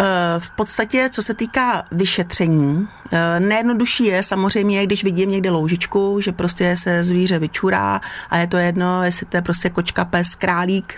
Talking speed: 160 wpm